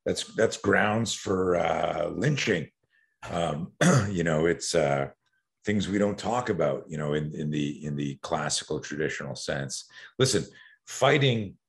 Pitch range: 75-100 Hz